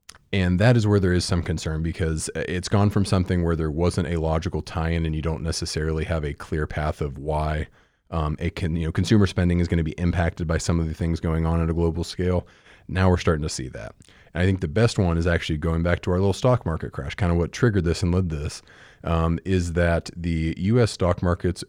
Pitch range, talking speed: 80-95 Hz, 245 wpm